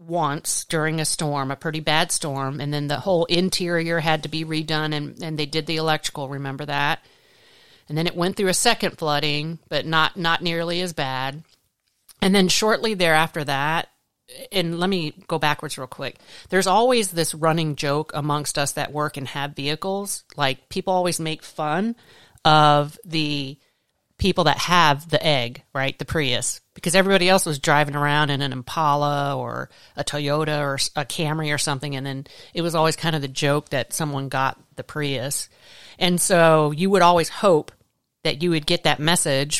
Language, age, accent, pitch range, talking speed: English, 40-59, American, 145-175 Hz, 185 wpm